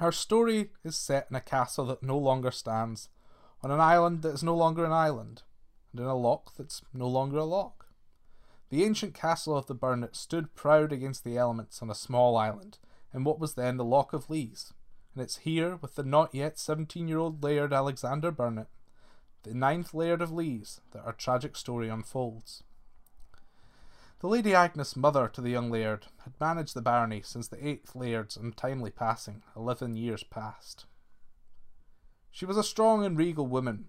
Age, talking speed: 20-39, 175 wpm